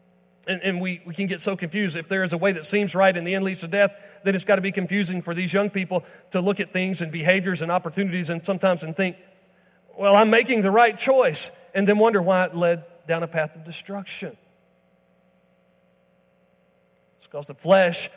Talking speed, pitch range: 215 wpm, 140-185 Hz